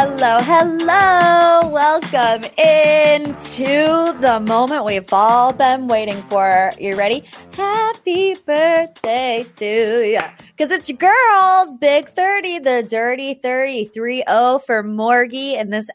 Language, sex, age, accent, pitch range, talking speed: English, female, 20-39, American, 195-280 Hz, 120 wpm